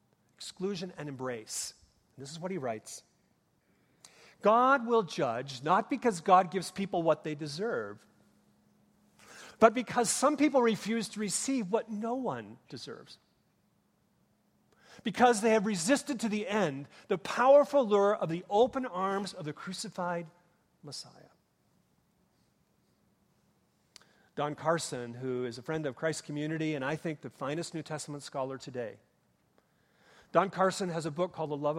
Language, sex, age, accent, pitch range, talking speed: English, male, 40-59, American, 140-205 Hz, 140 wpm